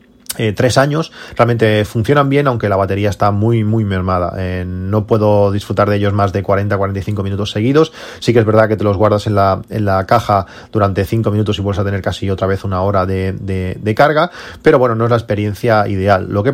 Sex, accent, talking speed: male, Spanish, 225 wpm